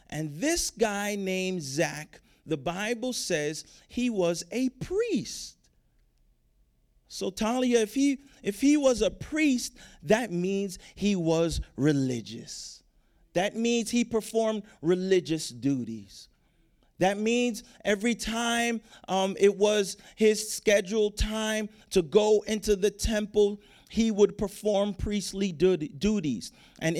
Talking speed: 120 wpm